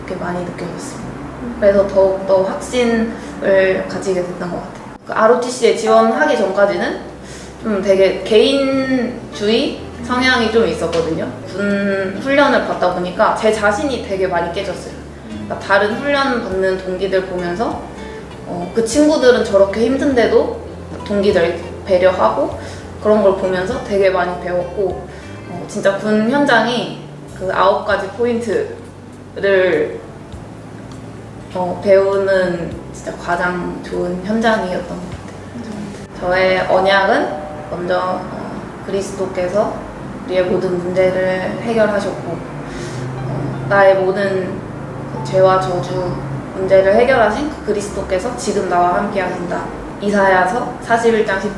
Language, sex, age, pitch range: Korean, female, 20-39, 180-220 Hz